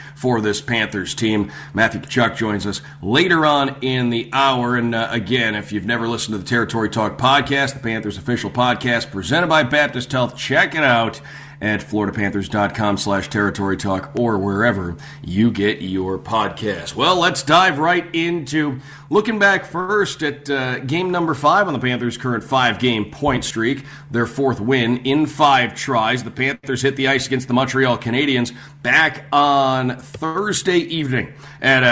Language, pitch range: English, 115-145 Hz